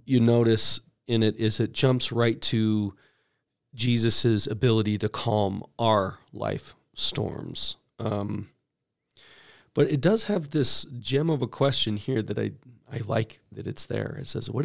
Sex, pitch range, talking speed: male, 110-130 Hz, 150 wpm